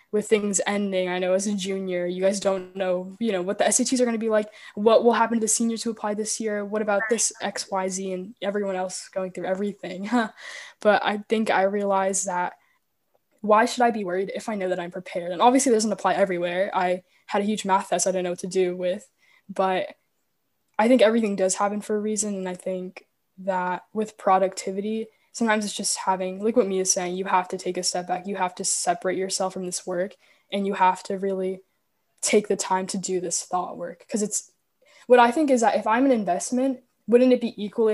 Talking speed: 230 wpm